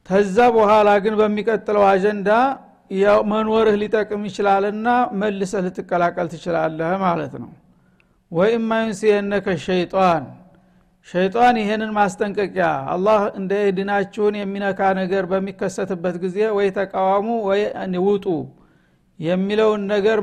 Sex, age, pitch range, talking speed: male, 60-79, 190-215 Hz, 95 wpm